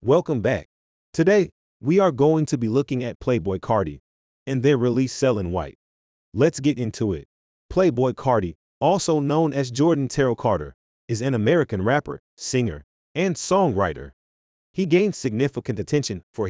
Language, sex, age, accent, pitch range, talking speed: English, male, 30-49, American, 95-145 Hz, 150 wpm